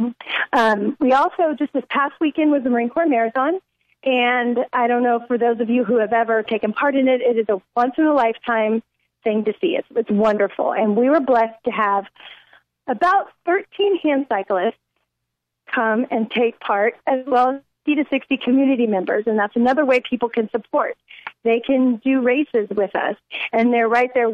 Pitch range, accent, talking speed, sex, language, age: 225-265 Hz, American, 185 wpm, female, English, 40-59